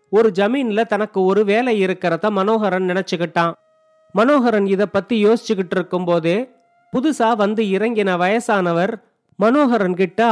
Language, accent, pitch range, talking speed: Tamil, native, 185-230 Hz, 110 wpm